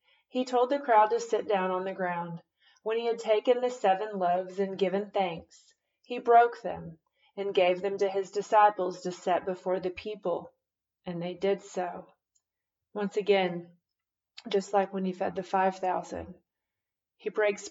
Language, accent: English, American